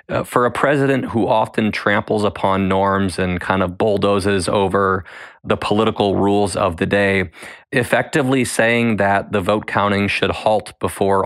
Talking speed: 150 wpm